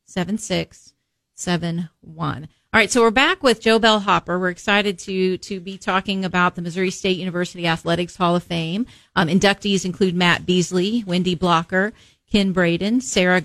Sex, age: female, 40-59